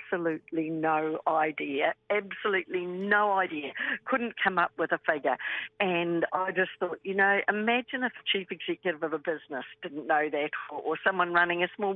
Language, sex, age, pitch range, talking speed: English, female, 60-79, 160-200 Hz, 175 wpm